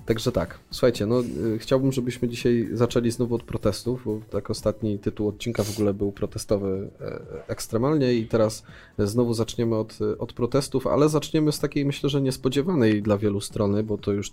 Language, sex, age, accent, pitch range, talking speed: Polish, male, 20-39, native, 105-120 Hz, 170 wpm